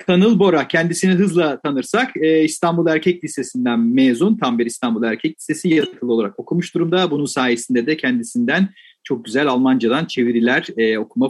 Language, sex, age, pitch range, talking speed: Turkish, male, 40-59, 120-180 Hz, 145 wpm